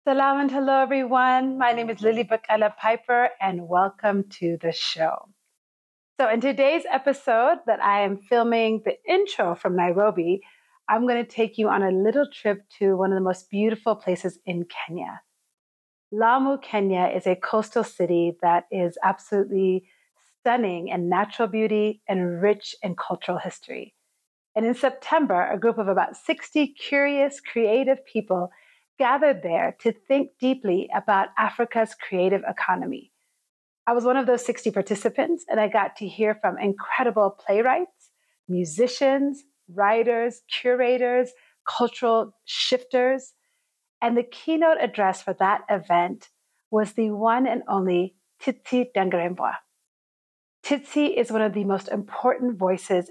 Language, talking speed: English, 140 wpm